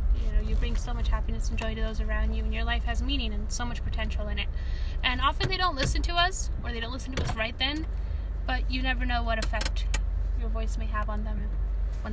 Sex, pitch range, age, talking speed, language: female, 75-85 Hz, 10-29, 245 wpm, English